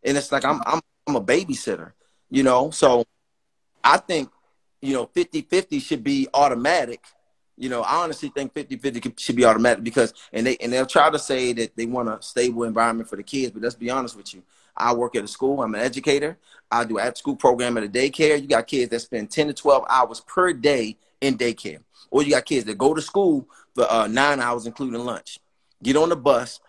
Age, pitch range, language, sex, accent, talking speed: 30-49, 115-145 Hz, English, male, American, 220 wpm